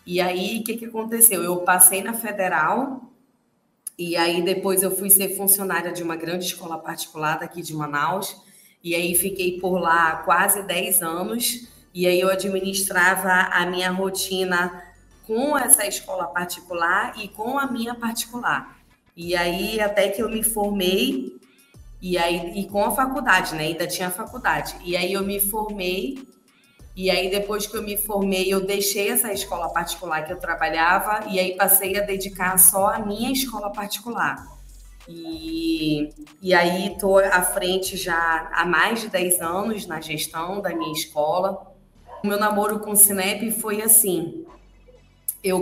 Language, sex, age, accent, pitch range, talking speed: Portuguese, female, 20-39, Brazilian, 180-215 Hz, 160 wpm